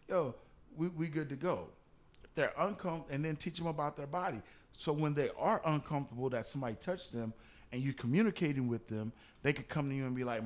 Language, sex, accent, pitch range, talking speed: English, male, American, 115-145 Hz, 210 wpm